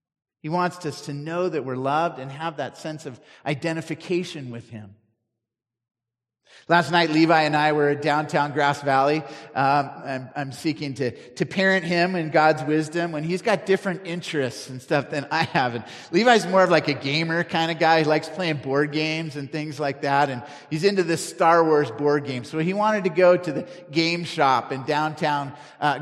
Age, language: 30-49, English